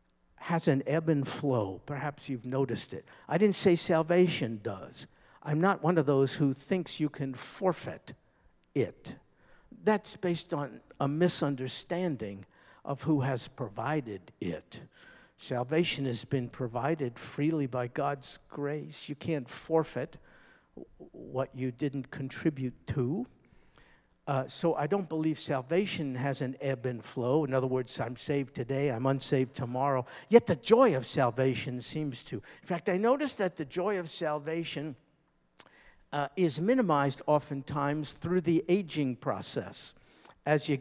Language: English